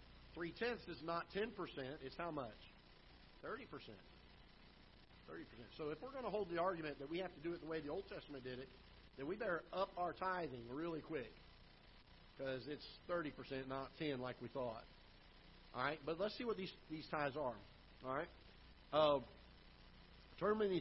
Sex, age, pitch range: male, 50-69, 125-165 Hz